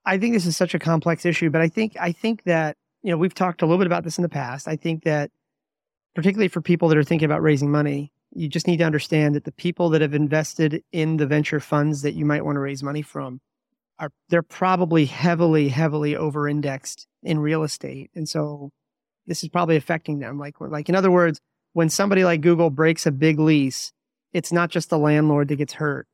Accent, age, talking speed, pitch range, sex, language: American, 30-49, 225 wpm, 150-175 Hz, male, English